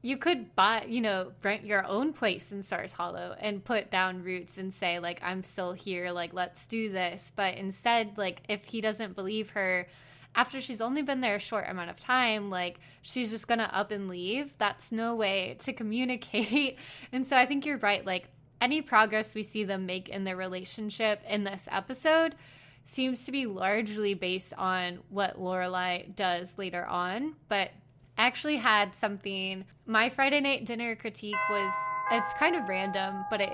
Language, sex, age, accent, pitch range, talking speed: English, female, 20-39, American, 185-225 Hz, 185 wpm